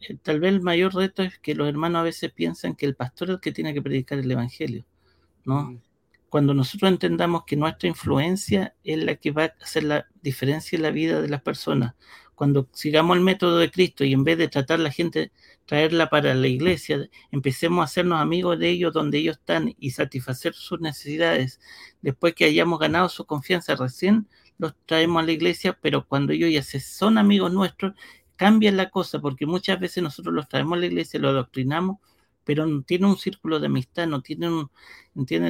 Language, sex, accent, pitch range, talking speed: Spanish, male, Argentinian, 140-180 Hz, 200 wpm